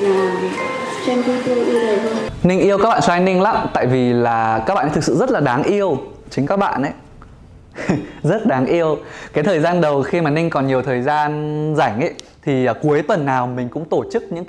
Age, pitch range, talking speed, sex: 20-39, 120-175 Hz, 200 wpm, male